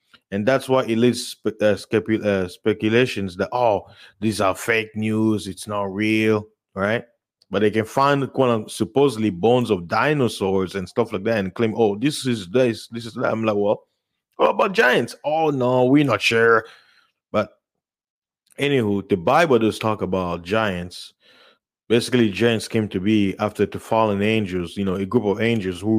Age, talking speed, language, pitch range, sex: 20-39, 180 wpm, English, 100-120 Hz, male